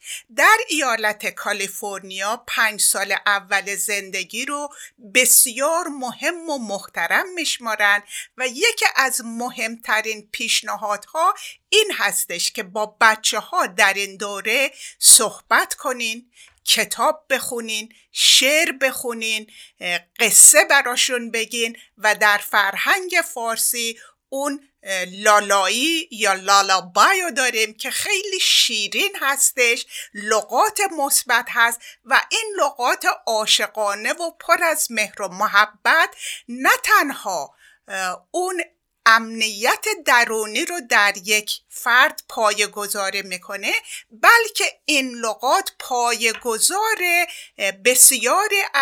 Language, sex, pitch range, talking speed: Persian, female, 210-300 Hz, 100 wpm